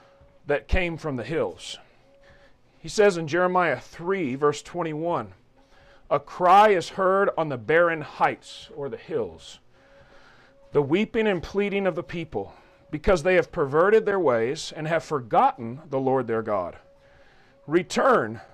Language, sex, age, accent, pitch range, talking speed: English, male, 40-59, American, 135-185 Hz, 140 wpm